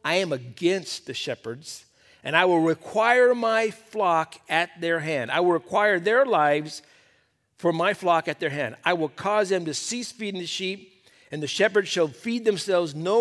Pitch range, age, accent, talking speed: 130-185 Hz, 50-69, American, 185 wpm